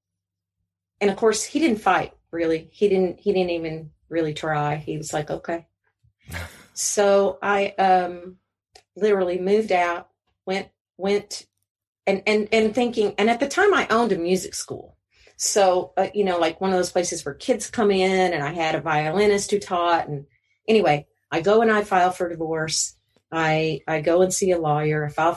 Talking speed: 180 wpm